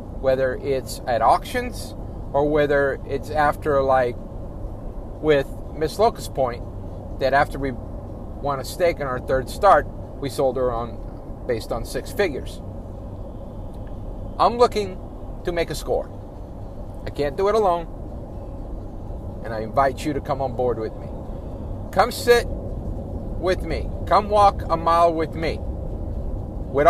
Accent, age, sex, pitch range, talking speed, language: American, 50-69, male, 95-140 Hz, 140 wpm, English